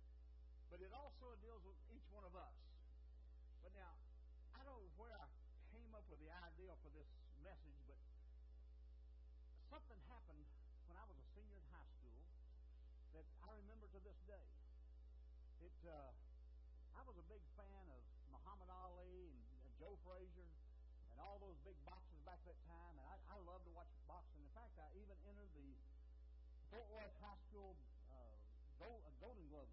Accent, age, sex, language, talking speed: American, 60-79, male, English, 170 wpm